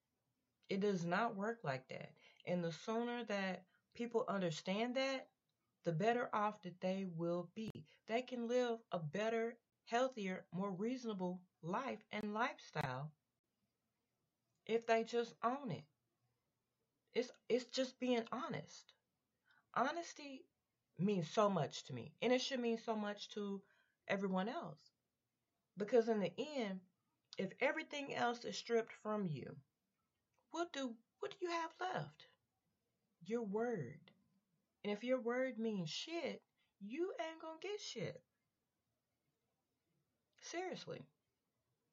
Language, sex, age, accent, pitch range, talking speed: English, female, 30-49, American, 175-240 Hz, 125 wpm